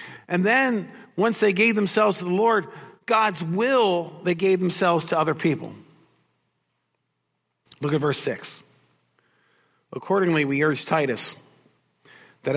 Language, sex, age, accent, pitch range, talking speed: English, male, 50-69, American, 135-170 Hz, 125 wpm